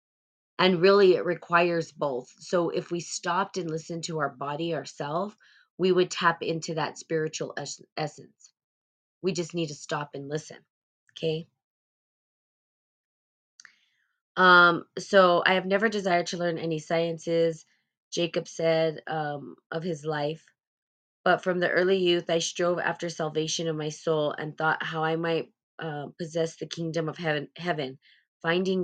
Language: English